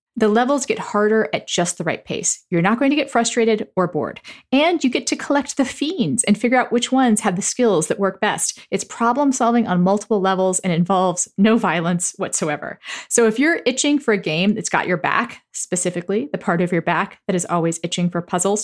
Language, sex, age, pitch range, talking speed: English, female, 40-59, 180-235 Hz, 220 wpm